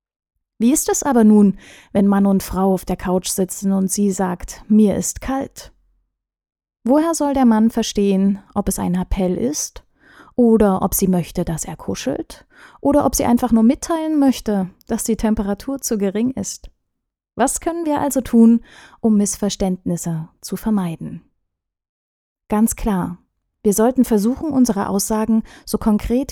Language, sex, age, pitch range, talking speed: German, female, 20-39, 190-235 Hz, 155 wpm